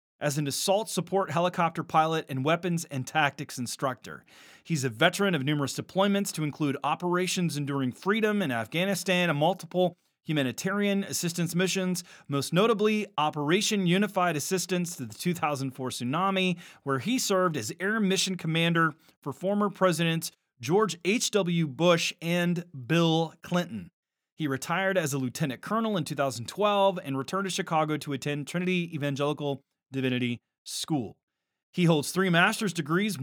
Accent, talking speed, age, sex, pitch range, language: American, 140 wpm, 30-49, male, 145-190 Hz, English